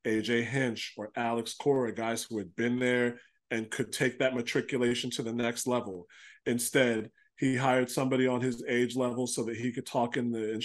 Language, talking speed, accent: English, 195 wpm, American